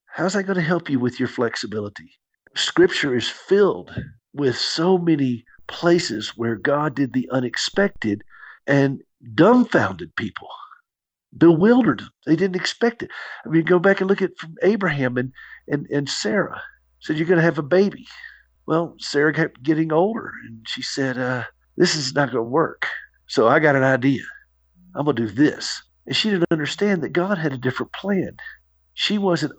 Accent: American